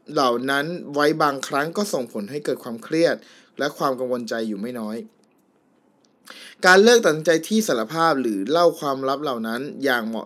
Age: 20-39